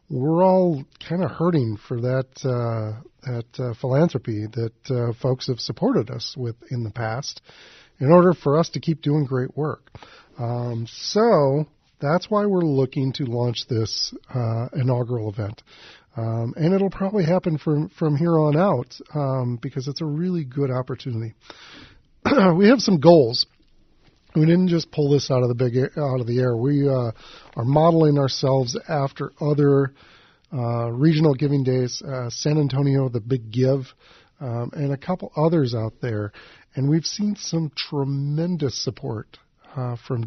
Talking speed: 160 wpm